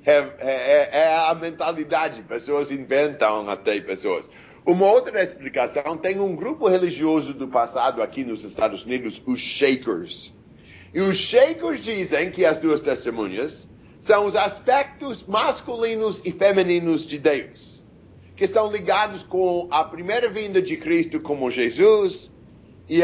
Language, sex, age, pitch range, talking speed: English, male, 50-69, 135-210 Hz, 135 wpm